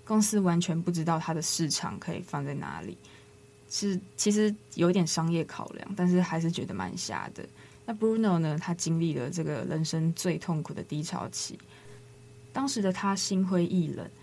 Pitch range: 160-190 Hz